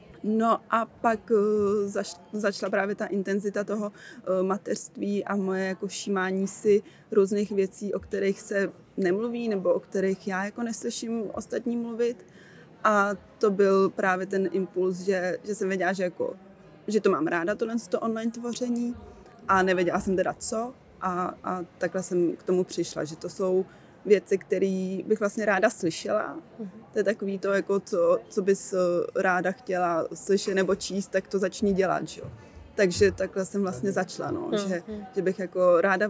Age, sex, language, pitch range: 20-39, female, Czech, 180-205 Hz